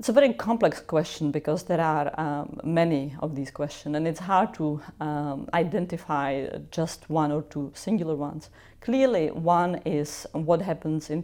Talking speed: 165 wpm